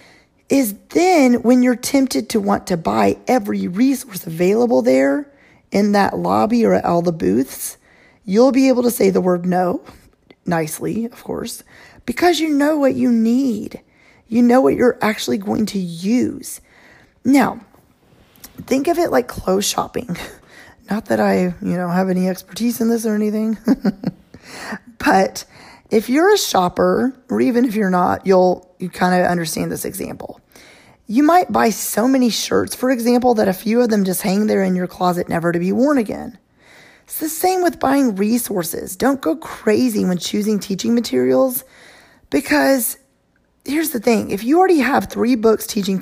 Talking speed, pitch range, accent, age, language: 170 wpm, 190-255 Hz, American, 20-39, English